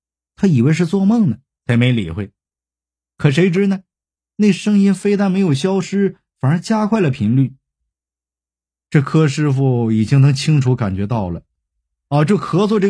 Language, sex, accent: Chinese, male, native